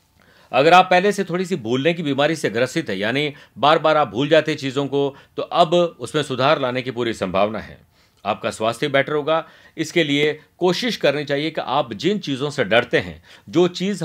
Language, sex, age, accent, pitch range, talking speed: Hindi, male, 50-69, native, 135-175 Hz, 205 wpm